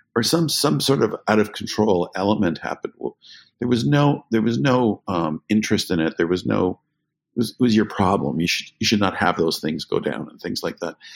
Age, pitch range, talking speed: 50-69, 90-110 Hz, 235 wpm